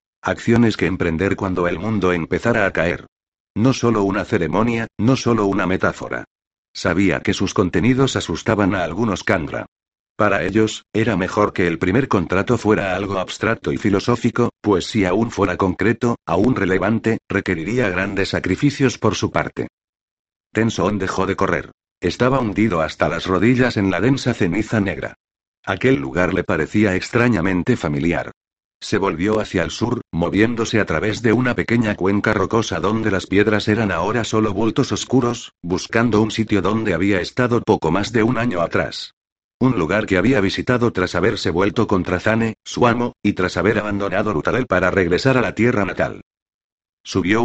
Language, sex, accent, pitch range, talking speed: Spanish, male, Spanish, 95-115 Hz, 160 wpm